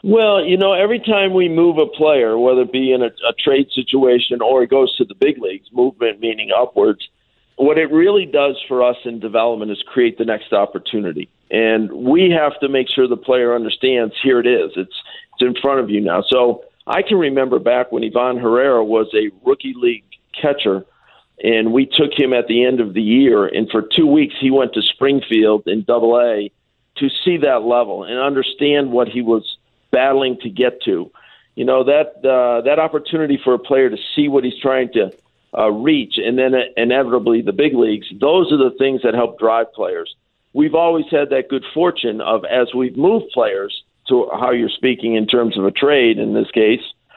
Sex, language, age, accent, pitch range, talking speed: male, English, 50-69, American, 120-160 Hz, 205 wpm